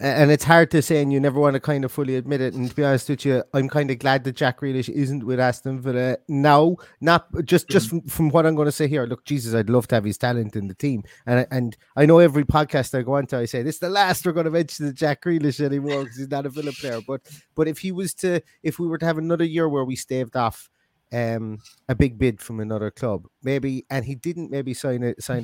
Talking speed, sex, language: 275 wpm, male, English